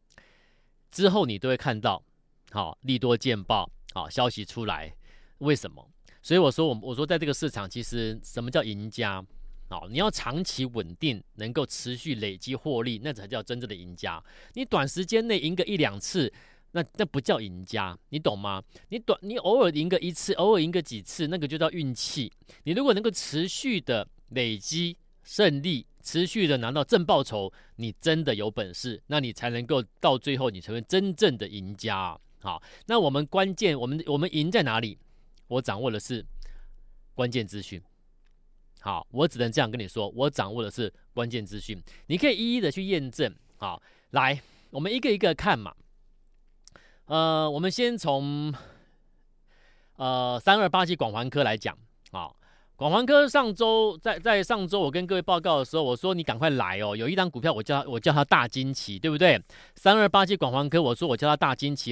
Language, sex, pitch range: Chinese, male, 120-180 Hz